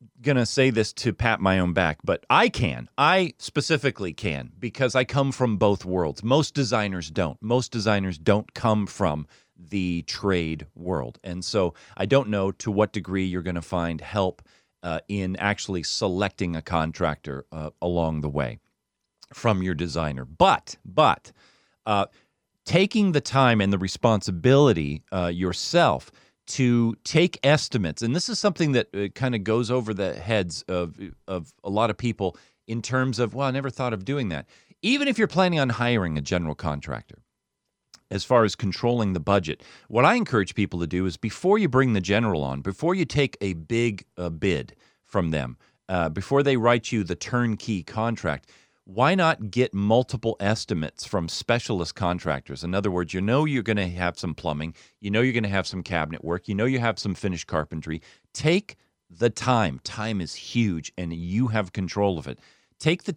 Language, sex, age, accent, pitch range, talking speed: English, male, 40-59, American, 90-125 Hz, 180 wpm